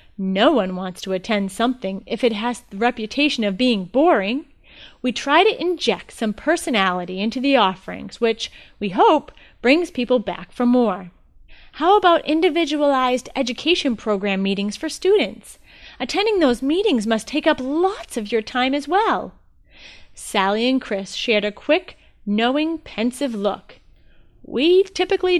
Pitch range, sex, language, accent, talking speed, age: 205-330 Hz, female, English, American, 145 wpm, 30-49